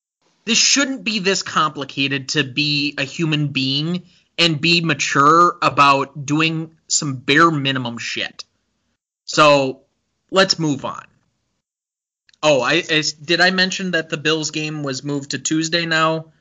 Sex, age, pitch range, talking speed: male, 20-39, 130-155 Hz, 140 wpm